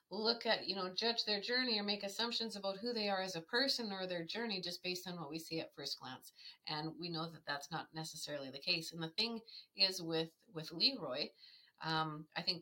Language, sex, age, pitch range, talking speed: English, female, 30-49, 155-205 Hz, 230 wpm